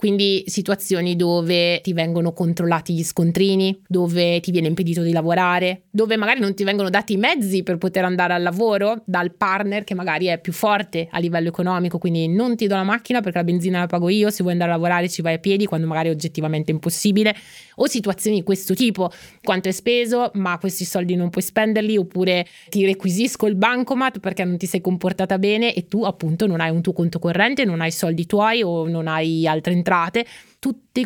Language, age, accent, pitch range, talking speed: Italian, 20-39, native, 170-205 Hz, 205 wpm